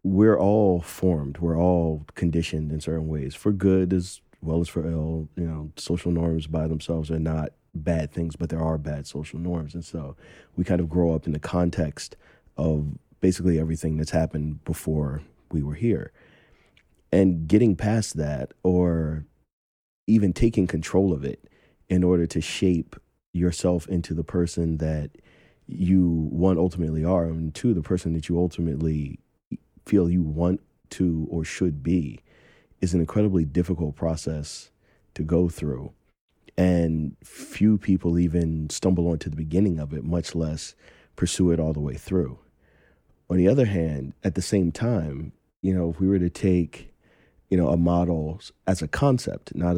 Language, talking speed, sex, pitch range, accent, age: English, 165 wpm, male, 80-90 Hz, American, 30-49